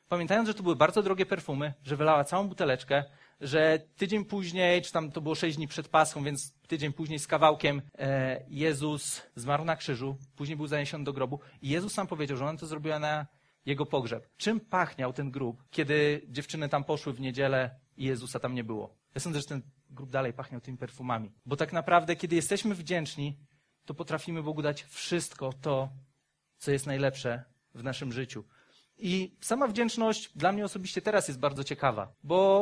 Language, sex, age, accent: Polish, male, 30-49, native